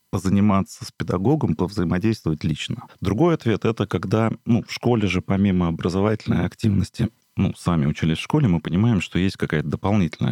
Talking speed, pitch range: 165 wpm, 80-110 Hz